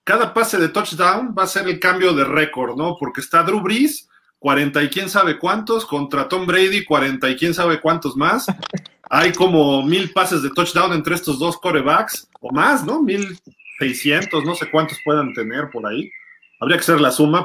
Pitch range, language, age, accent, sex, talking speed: 140-190 Hz, Spanish, 40-59, Mexican, male, 195 wpm